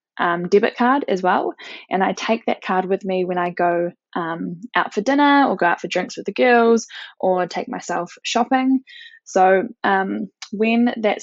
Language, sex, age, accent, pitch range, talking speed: English, female, 10-29, Australian, 180-230 Hz, 185 wpm